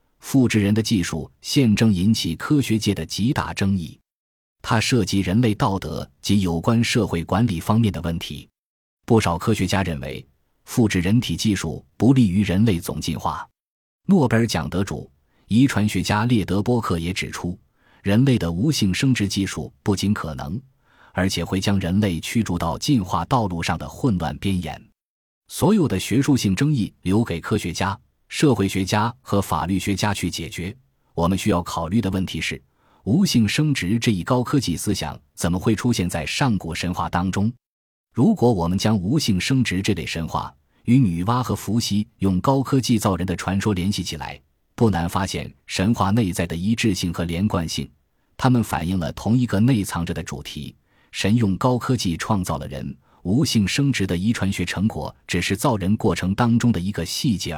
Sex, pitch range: male, 85-115 Hz